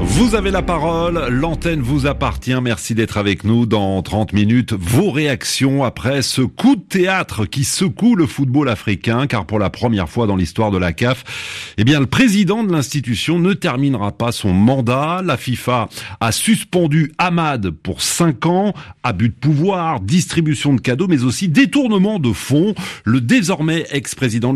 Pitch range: 110-165 Hz